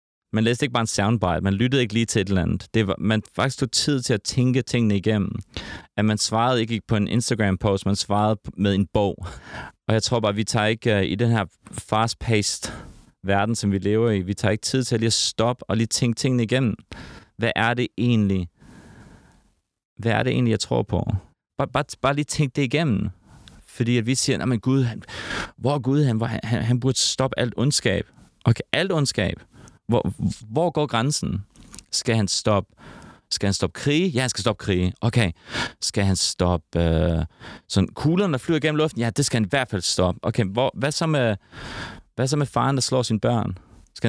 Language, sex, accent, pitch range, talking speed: Danish, male, native, 100-130 Hz, 205 wpm